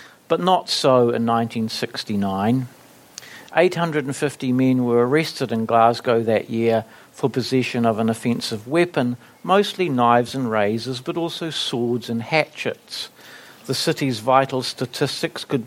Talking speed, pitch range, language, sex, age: 125 wpm, 115-145 Hz, English, male, 50-69